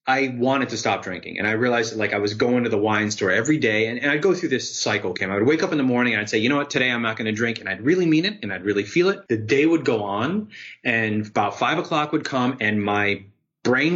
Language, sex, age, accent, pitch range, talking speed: English, male, 30-49, American, 110-130 Hz, 300 wpm